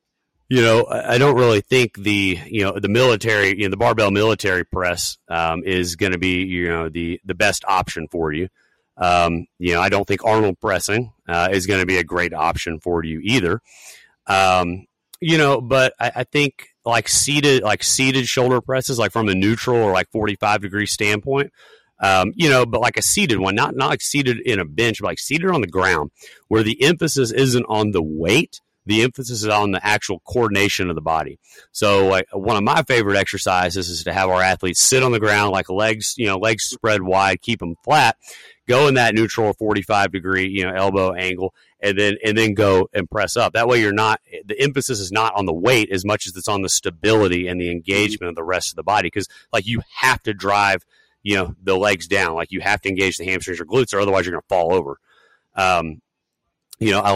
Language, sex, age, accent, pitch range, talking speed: English, male, 30-49, American, 95-115 Hz, 220 wpm